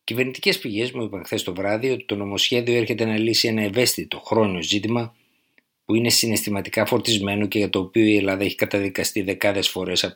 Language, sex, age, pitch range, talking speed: Greek, male, 50-69, 95-115 Hz, 190 wpm